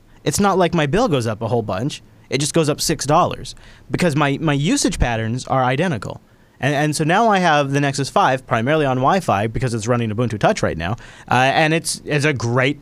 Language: English